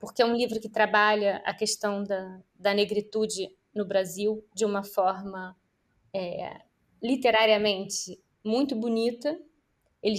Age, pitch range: 20-39, 200-255 Hz